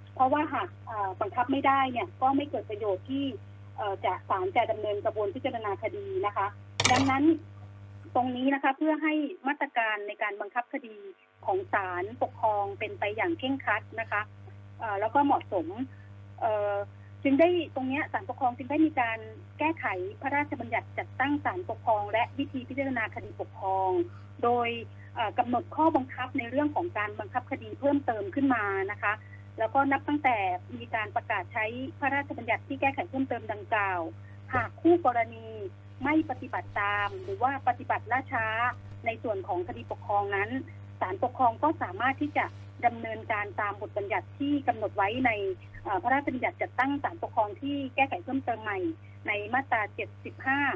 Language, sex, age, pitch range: Thai, female, 30-49, 200-285 Hz